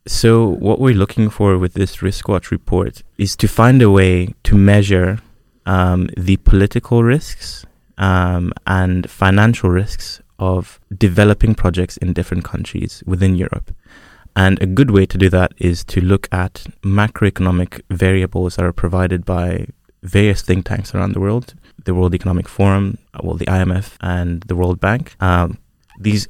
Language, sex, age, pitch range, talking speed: English, male, 20-39, 90-105 Hz, 155 wpm